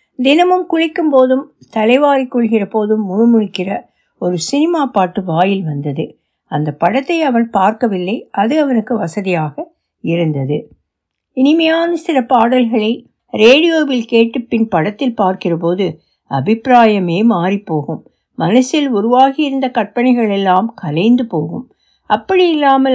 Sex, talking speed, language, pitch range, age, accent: female, 105 wpm, Tamil, 185-265 Hz, 60-79, native